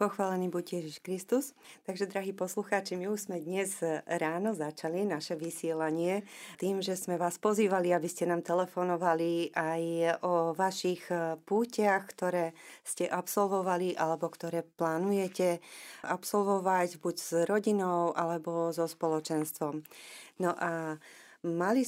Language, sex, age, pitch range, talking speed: Slovak, female, 30-49, 170-190 Hz, 120 wpm